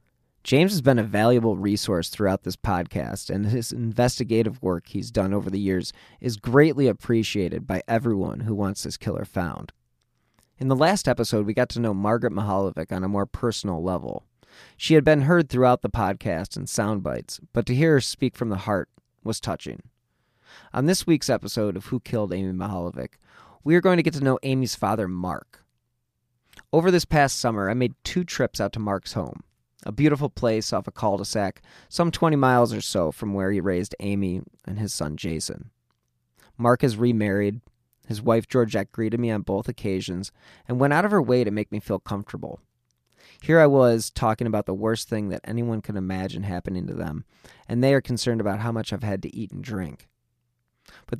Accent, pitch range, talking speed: American, 100-125 Hz, 195 wpm